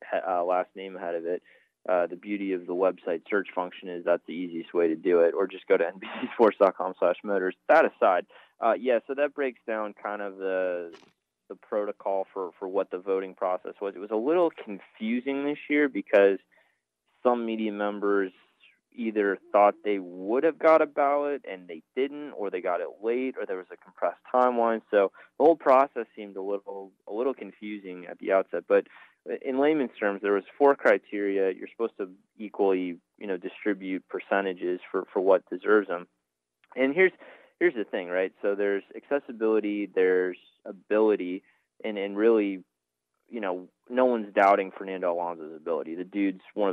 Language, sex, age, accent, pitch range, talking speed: English, male, 20-39, American, 90-115 Hz, 180 wpm